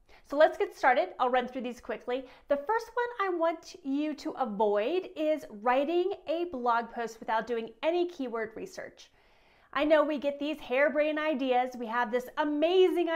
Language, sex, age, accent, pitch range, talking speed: English, female, 30-49, American, 240-340 Hz, 175 wpm